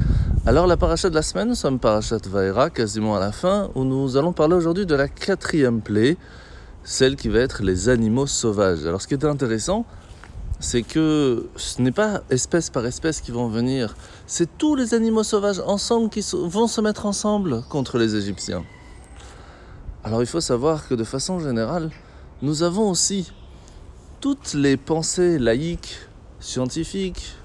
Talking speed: 165 wpm